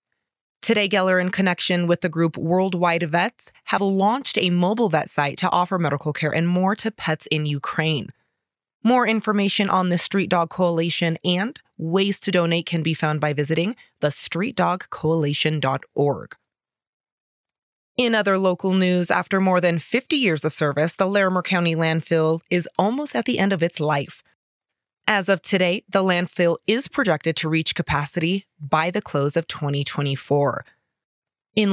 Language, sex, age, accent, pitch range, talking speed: English, female, 20-39, American, 155-195 Hz, 155 wpm